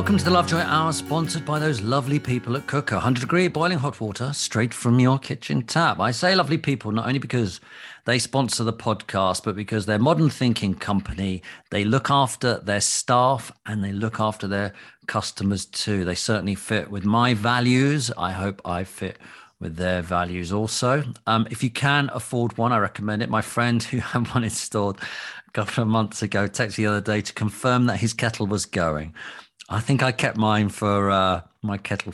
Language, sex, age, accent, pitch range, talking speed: English, male, 40-59, British, 95-125 Hz, 200 wpm